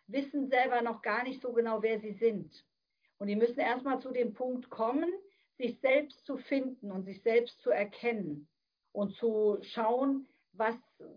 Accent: German